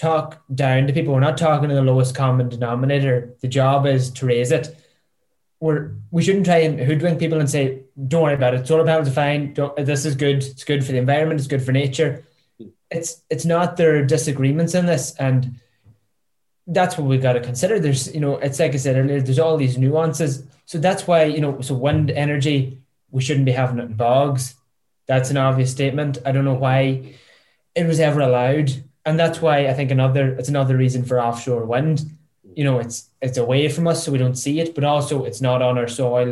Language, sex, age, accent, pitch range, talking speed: English, male, 10-29, Irish, 130-155 Hz, 220 wpm